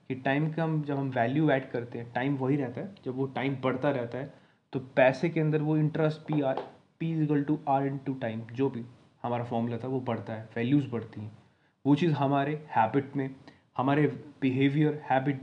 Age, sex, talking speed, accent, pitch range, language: 20-39, male, 210 wpm, native, 130-160 Hz, Hindi